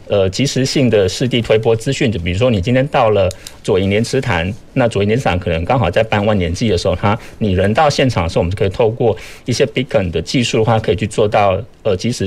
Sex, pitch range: male, 95-120 Hz